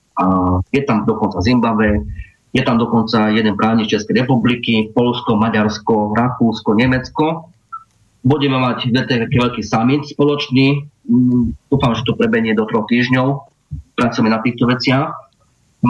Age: 30-49